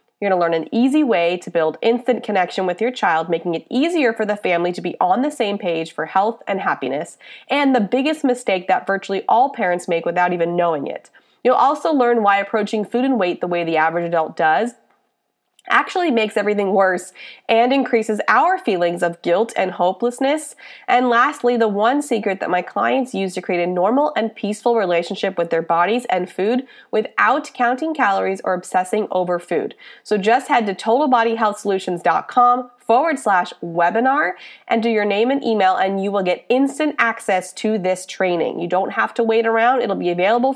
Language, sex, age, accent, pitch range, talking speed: English, female, 20-39, American, 185-245 Hz, 190 wpm